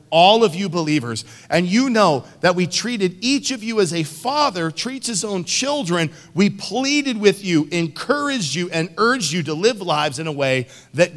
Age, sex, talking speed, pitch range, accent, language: 50-69, male, 195 wpm, 125-180 Hz, American, English